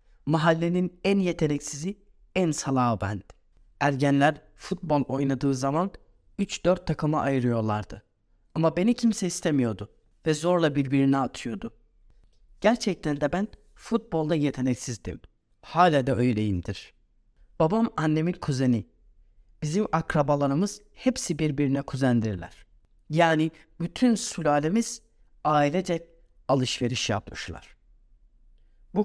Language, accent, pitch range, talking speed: Turkish, native, 130-175 Hz, 90 wpm